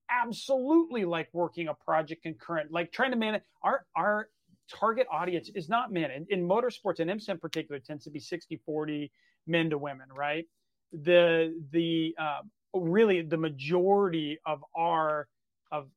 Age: 40-59